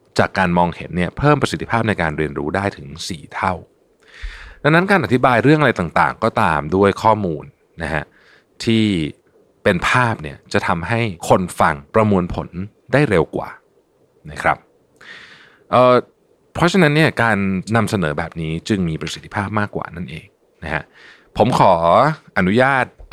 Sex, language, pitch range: male, Thai, 90-130 Hz